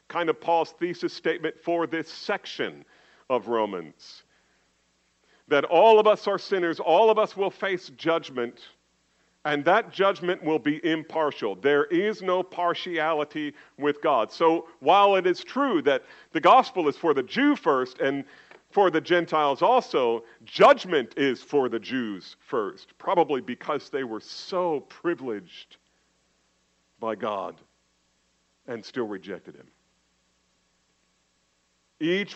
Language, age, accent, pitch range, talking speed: English, 50-69, American, 130-185 Hz, 130 wpm